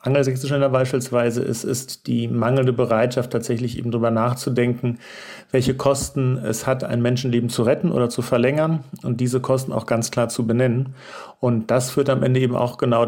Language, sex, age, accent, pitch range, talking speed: German, male, 40-59, German, 115-130 Hz, 175 wpm